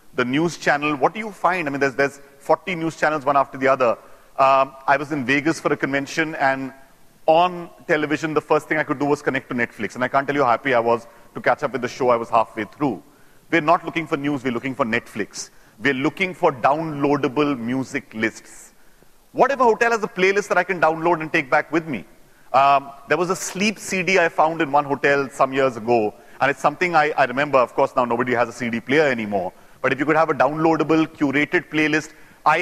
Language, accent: English, Indian